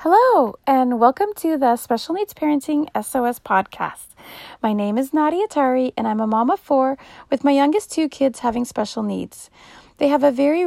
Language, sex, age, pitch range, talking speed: English, female, 30-49, 235-320 Hz, 185 wpm